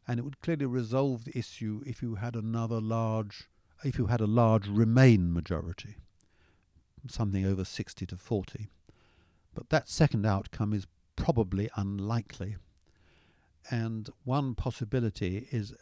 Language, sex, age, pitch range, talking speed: English, male, 50-69, 95-120 Hz, 135 wpm